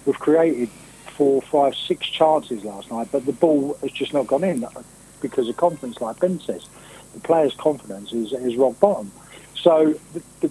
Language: English